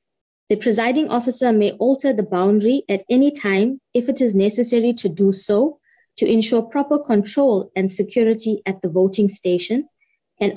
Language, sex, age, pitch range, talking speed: English, female, 20-39, 190-245 Hz, 160 wpm